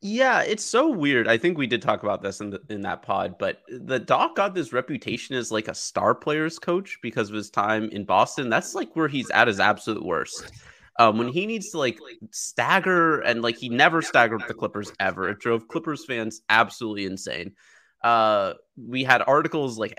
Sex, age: male, 30-49